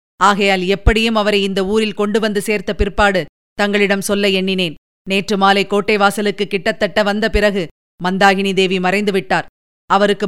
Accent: native